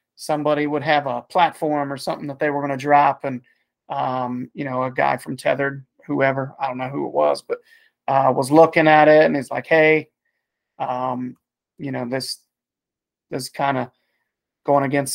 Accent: American